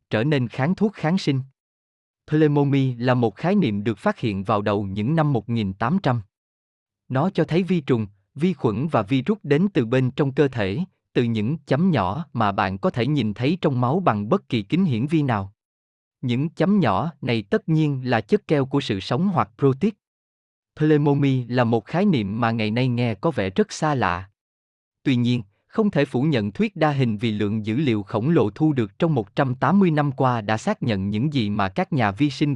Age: 20-39